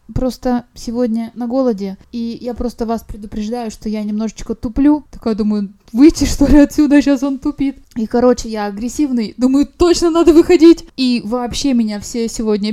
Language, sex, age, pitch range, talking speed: Russian, female, 20-39, 200-255 Hz, 165 wpm